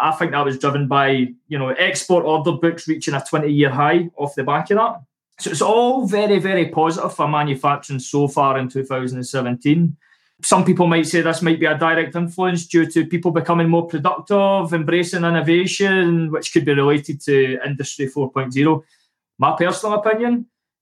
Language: English